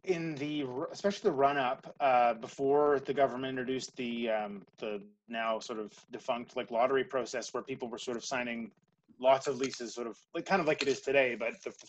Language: English